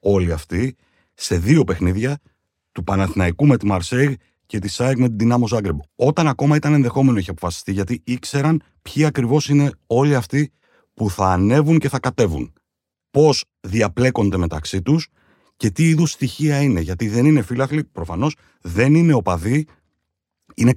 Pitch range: 100-140 Hz